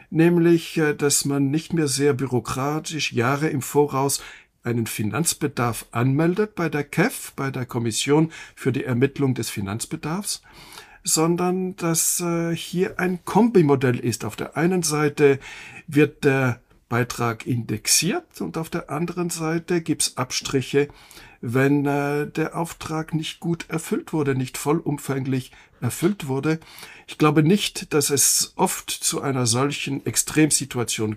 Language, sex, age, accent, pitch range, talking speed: German, male, 60-79, German, 120-155 Hz, 130 wpm